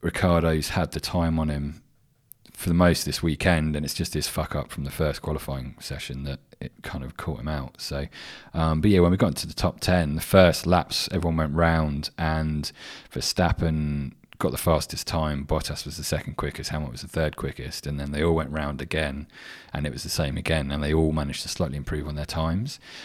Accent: British